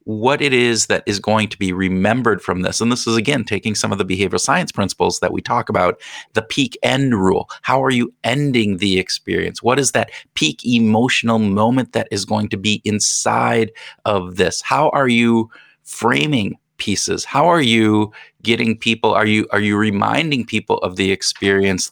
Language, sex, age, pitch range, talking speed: English, male, 30-49, 100-115 Hz, 185 wpm